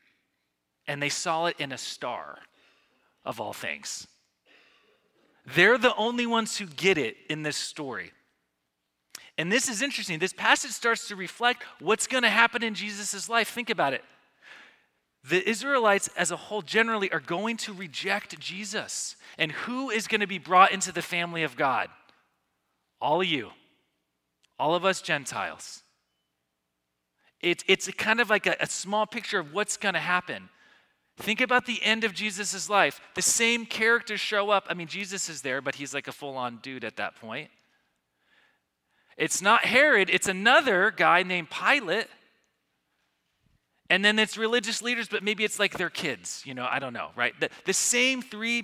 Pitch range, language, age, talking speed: 155-220 Hz, English, 30-49, 170 wpm